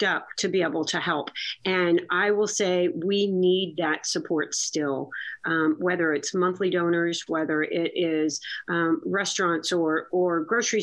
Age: 40-59